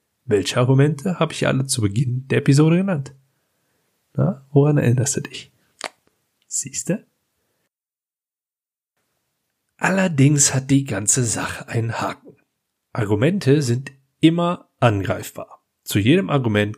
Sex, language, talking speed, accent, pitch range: male, German, 110 wpm, German, 115-150 Hz